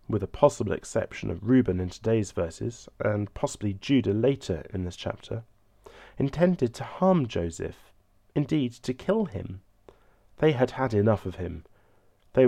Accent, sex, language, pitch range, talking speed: British, male, English, 95-130 Hz, 150 wpm